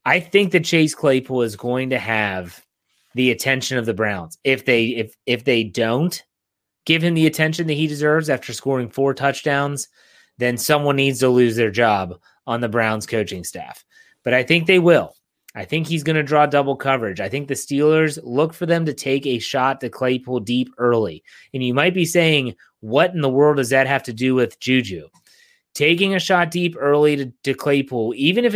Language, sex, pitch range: English, male, 120-150 Hz